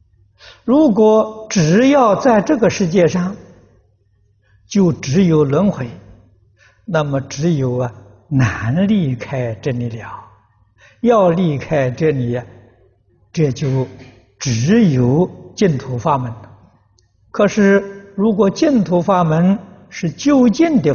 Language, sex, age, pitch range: Chinese, male, 60-79, 120-180 Hz